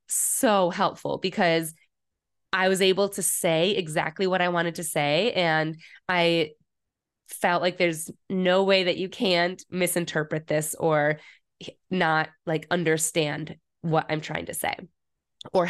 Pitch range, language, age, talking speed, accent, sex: 170-215 Hz, English, 20-39, 140 wpm, American, female